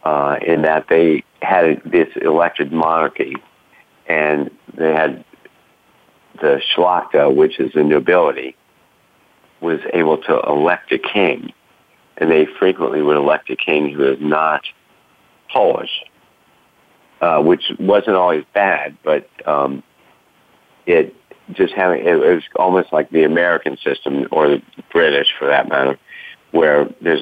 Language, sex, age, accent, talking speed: English, male, 50-69, American, 130 wpm